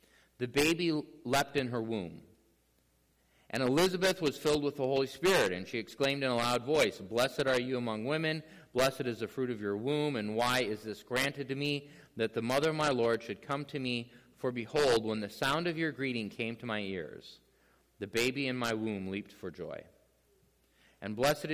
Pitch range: 100-135 Hz